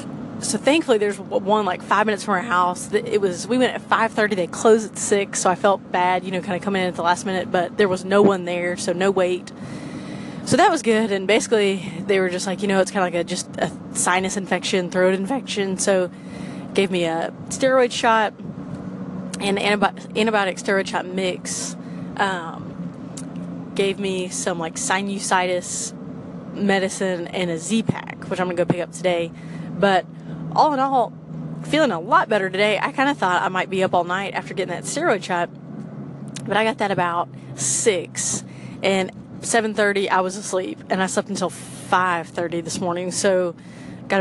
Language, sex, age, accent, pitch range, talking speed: English, female, 20-39, American, 180-210 Hz, 190 wpm